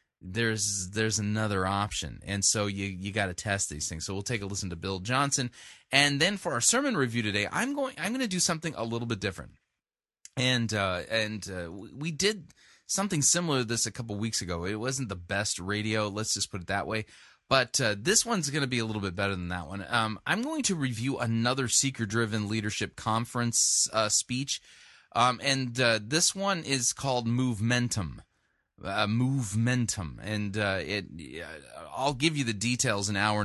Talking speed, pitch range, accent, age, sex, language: 205 wpm, 105-140 Hz, American, 20-39, male, English